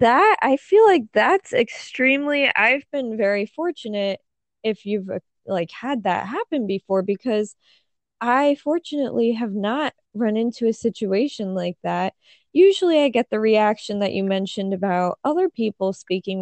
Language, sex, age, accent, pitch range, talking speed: English, female, 20-39, American, 190-270 Hz, 145 wpm